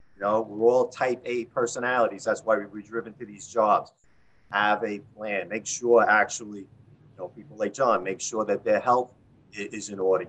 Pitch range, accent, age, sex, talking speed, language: 110-135 Hz, American, 40-59, male, 200 wpm, English